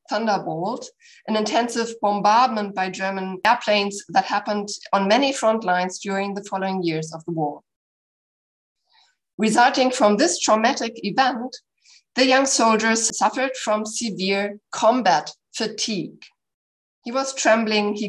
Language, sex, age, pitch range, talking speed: English, female, 50-69, 195-250 Hz, 125 wpm